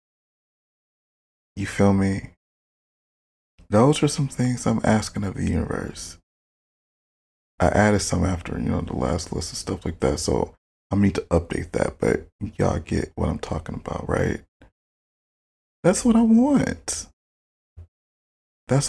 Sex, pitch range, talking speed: male, 80-105 Hz, 140 wpm